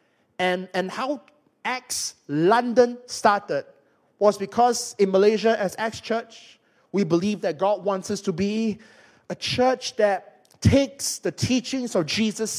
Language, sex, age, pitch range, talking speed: English, male, 30-49, 170-220 Hz, 140 wpm